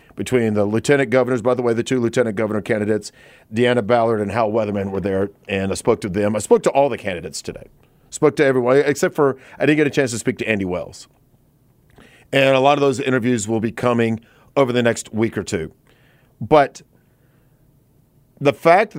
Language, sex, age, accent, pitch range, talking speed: English, male, 40-59, American, 115-145 Hz, 200 wpm